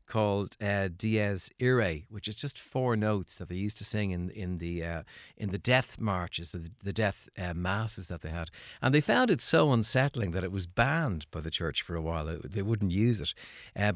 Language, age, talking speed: English, 60-79, 220 wpm